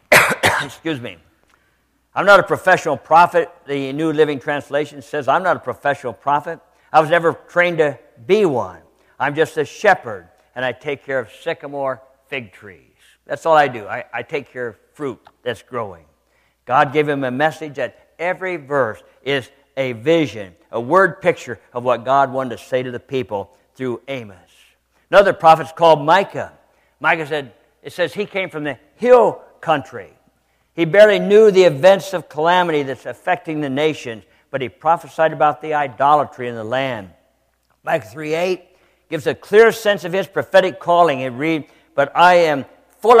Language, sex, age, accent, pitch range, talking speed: English, male, 60-79, American, 135-175 Hz, 170 wpm